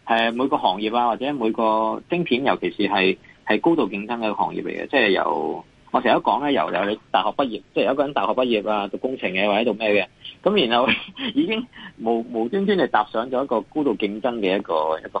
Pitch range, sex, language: 105-145 Hz, male, Chinese